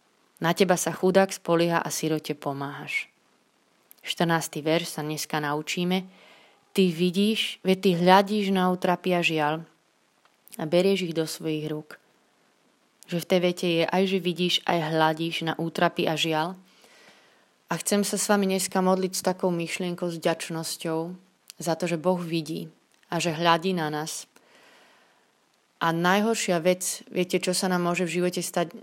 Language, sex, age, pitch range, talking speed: Slovak, female, 20-39, 160-185 Hz, 155 wpm